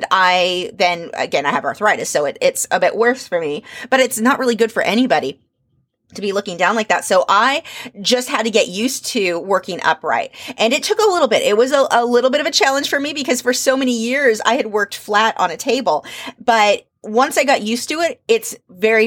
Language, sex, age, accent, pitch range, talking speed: English, female, 30-49, American, 190-255 Hz, 235 wpm